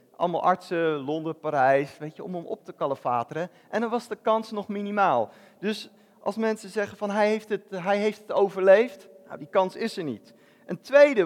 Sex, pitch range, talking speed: male, 165-220 Hz, 205 wpm